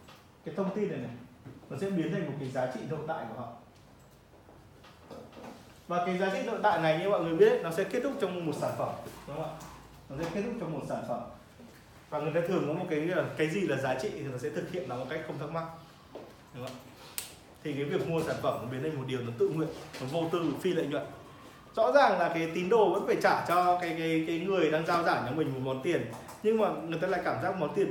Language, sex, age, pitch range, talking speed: Vietnamese, male, 20-39, 140-180 Hz, 265 wpm